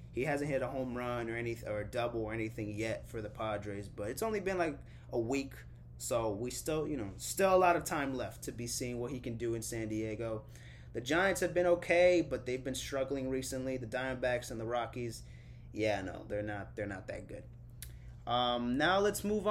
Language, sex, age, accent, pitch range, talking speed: English, male, 20-39, American, 105-130 Hz, 220 wpm